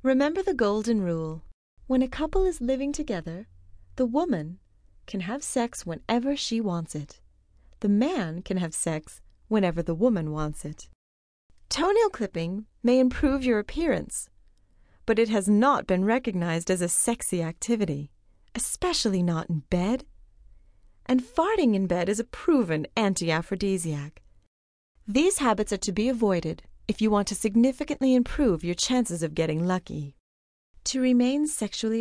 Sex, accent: female, American